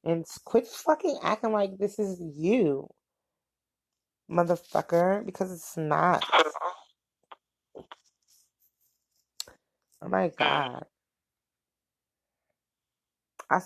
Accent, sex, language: American, female, English